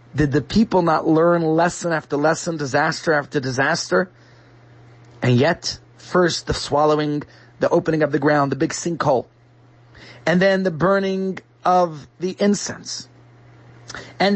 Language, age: English, 30-49